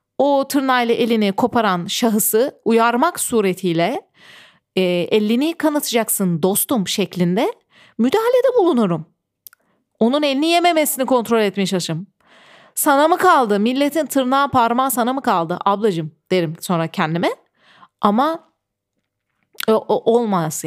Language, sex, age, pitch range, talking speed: Turkish, female, 40-59, 185-270 Hz, 100 wpm